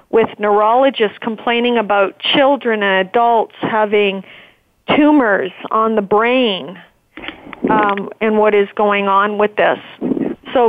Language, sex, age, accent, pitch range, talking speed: English, female, 40-59, American, 215-260 Hz, 120 wpm